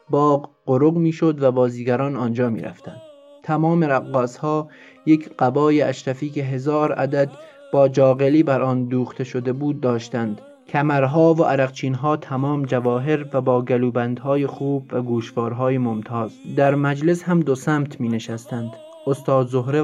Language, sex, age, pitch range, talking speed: Persian, male, 30-49, 130-155 Hz, 130 wpm